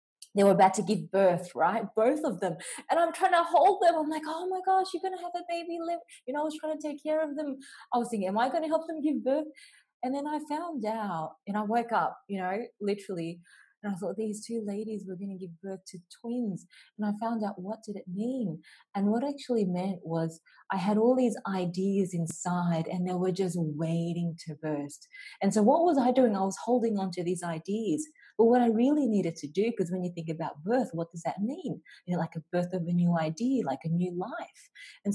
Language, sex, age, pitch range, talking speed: English, female, 20-39, 170-250 Hz, 250 wpm